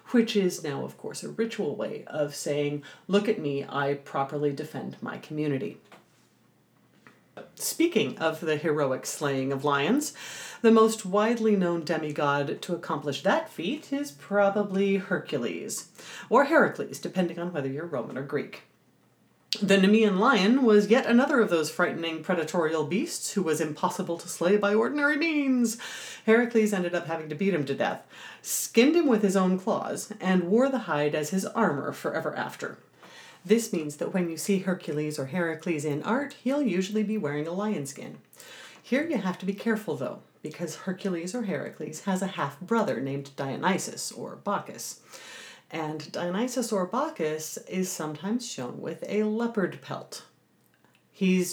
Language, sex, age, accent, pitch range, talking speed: English, female, 40-59, American, 150-215 Hz, 160 wpm